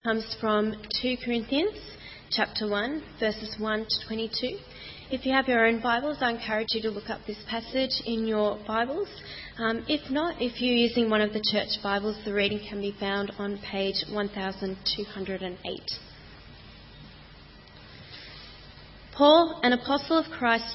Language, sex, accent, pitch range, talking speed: English, female, Australian, 210-255 Hz, 150 wpm